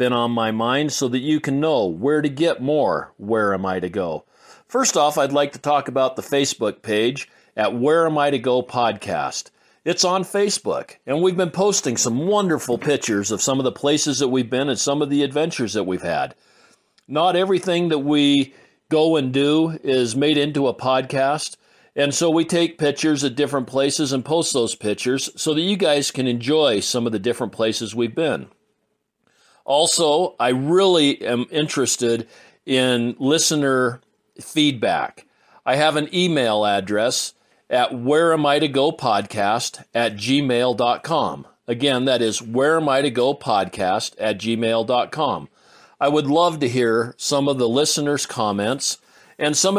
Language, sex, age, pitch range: English, male, 50-69, 120-150 Hz